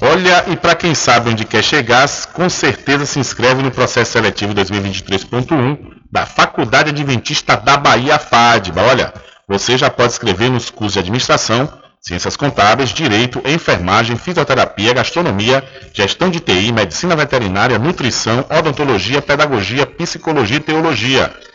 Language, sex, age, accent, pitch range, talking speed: Portuguese, male, 40-59, Brazilian, 110-150 Hz, 135 wpm